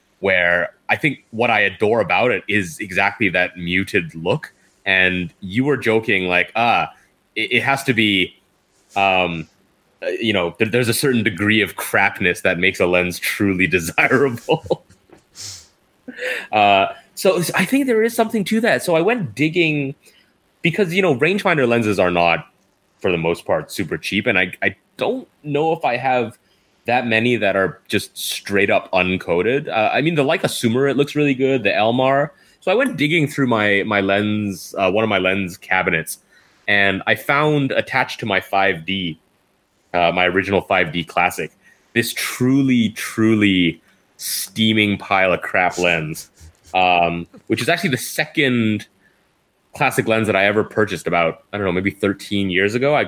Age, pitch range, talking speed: 30-49, 95-135 Hz, 165 wpm